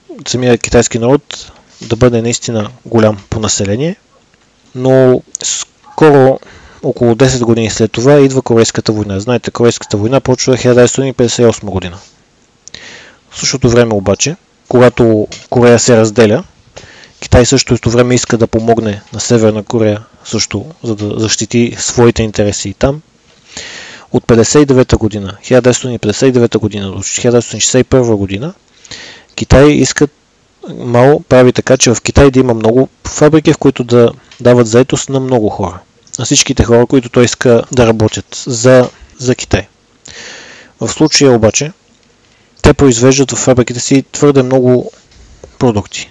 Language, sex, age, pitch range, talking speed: Bulgarian, male, 20-39, 110-130 Hz, 130 wpm